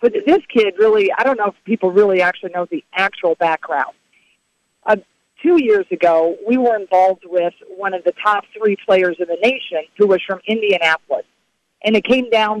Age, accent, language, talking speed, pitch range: 40-59, American, English, 190 wpm, 180-235 Hz